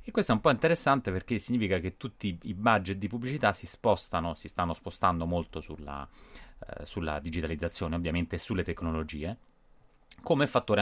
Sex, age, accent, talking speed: male, 30-49, native, 165 wpm